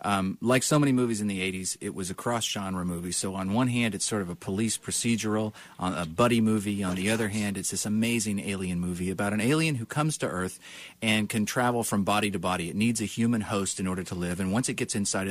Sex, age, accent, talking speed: male, 40-59, American, 245 wpm